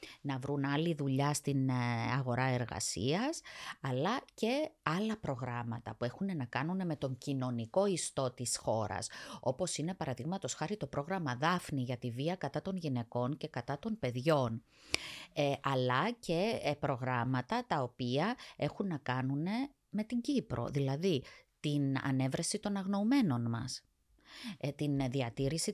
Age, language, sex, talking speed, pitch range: 20-39, Greek, female, 135 wpm, 130-175 Hz